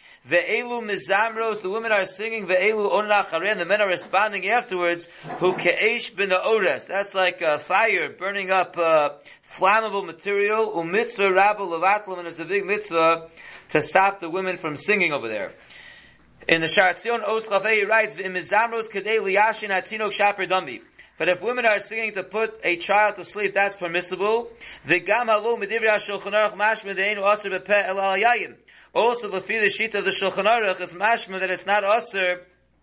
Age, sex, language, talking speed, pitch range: 30-49, male, English, 170 wpm, 185-215 Hz